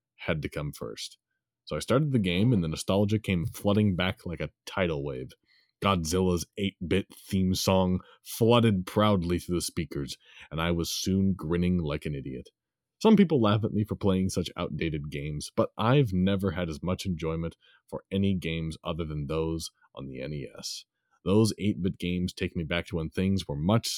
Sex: male